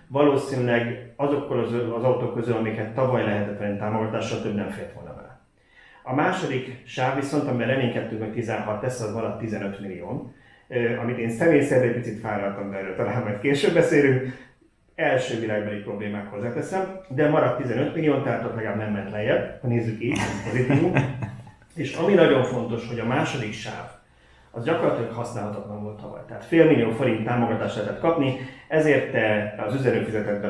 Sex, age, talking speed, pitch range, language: male, 30-49, 170 wpm, 105-130 Hz, Hungarian